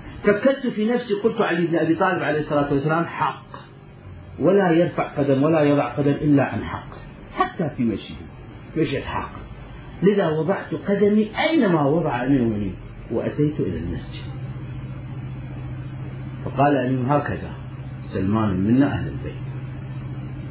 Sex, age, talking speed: male, 40-59, 125 wpm